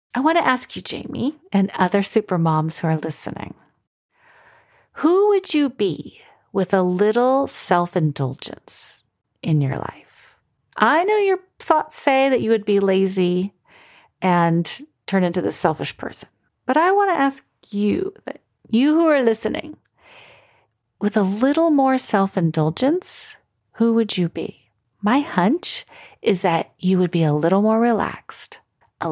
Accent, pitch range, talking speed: American, 185-270 Hz, 145 wpm